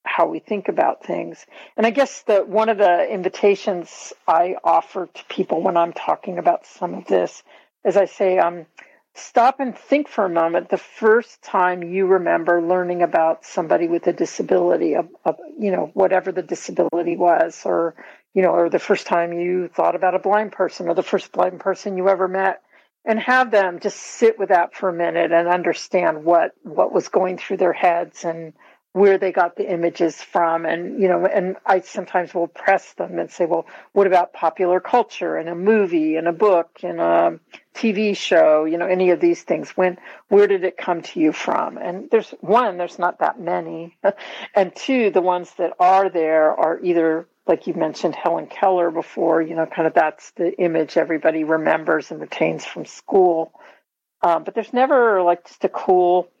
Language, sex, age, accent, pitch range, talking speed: English, female, 50-69, American, 170-195 Hz, 195 wpm